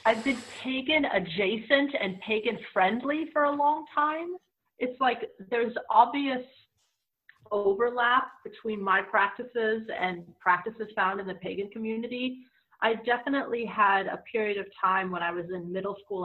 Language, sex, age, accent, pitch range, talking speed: English, female, 30-49, American, 170-230 Hz, 145 wpm